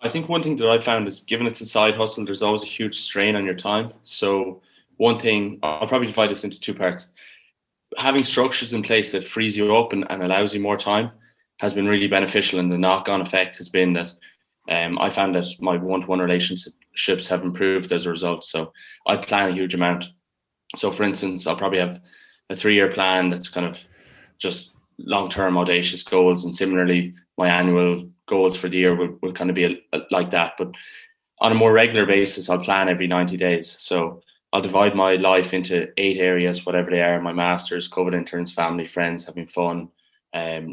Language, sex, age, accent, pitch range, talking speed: English, male, 20-39, Irish, 90-100 Hz, 200 wpm